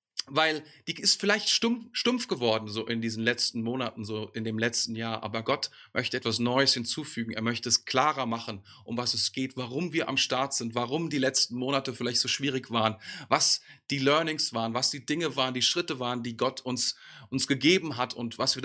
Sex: male